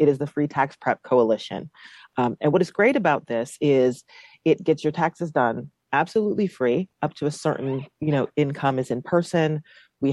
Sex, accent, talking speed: female, American, 195 wpm